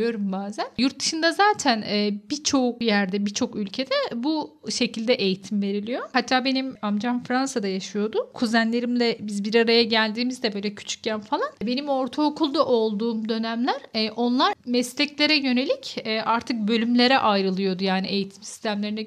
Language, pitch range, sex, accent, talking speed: Turkish, 210-260 Hz, female, native, 120 wpm